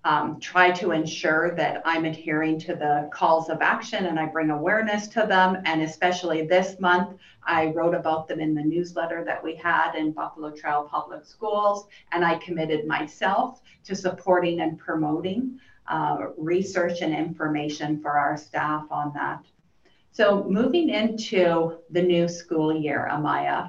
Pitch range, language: 155-180 Hz, English